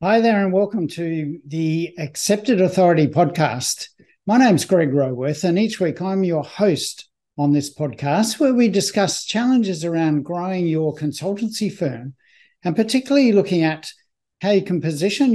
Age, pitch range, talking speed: 60-79, 155-205 Hz, 155 wpm